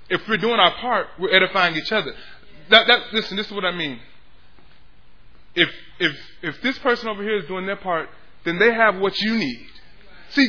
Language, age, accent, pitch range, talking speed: English, 20-39, American, 170-260 Hz, 200 wpm